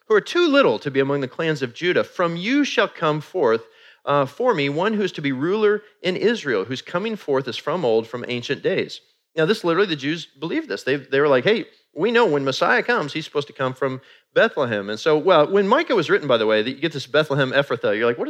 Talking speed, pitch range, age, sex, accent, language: 255 wpm, 130-220 Hz, 30-49, male, American, English